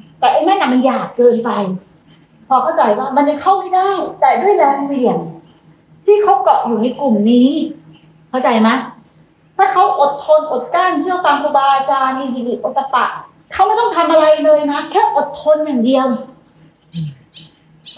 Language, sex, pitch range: Thai, female, 215-310 Hz